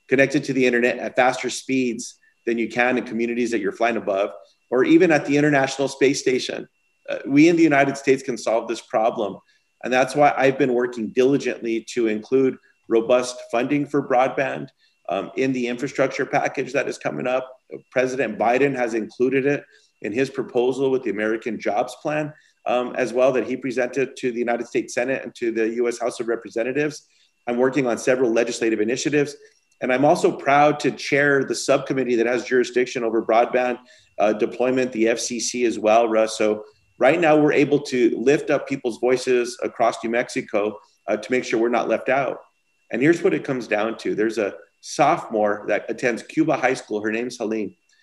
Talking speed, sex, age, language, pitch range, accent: 190 wpm, male, 40-59, English, 120-140 Hz, American